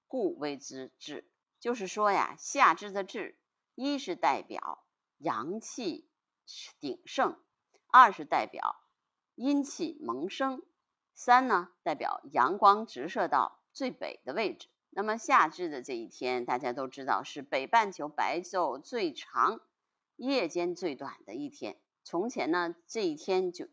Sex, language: female, Chinese